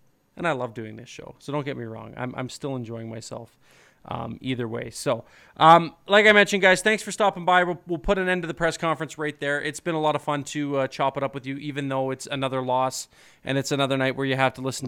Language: English